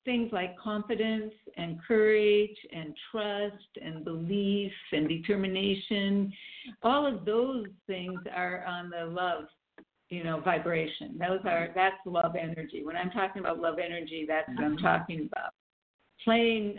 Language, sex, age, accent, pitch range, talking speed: English, female, 50-69, American, 165-205 Hz, 140 wpm